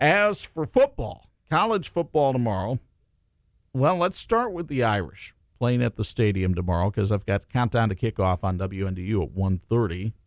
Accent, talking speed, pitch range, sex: American, 160 wpm, 95-125 Hz, male